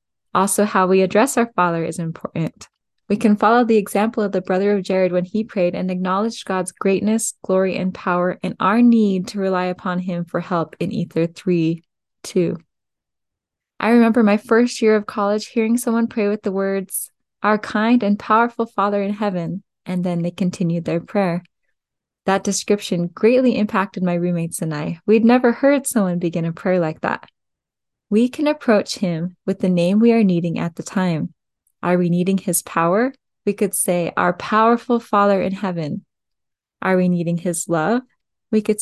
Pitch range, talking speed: 180-215 Hz, 180 wpm